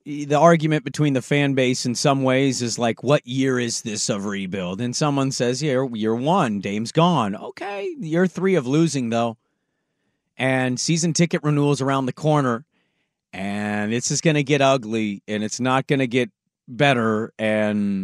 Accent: American